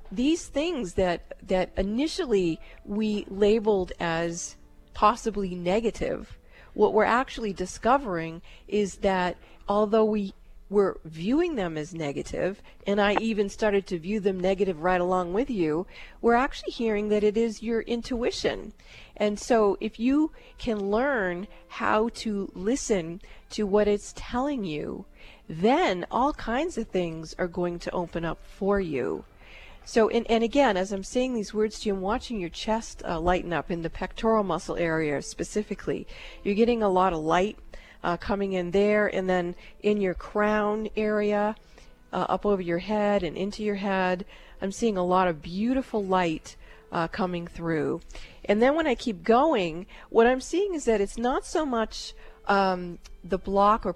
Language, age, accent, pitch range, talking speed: English, 40-59, American, 185-225 Hz, 160 wpm